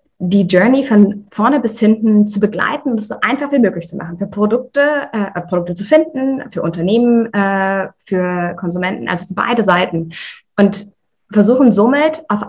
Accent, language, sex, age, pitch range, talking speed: German, German, female, 20-39, 195-240 Hz, 170 wpm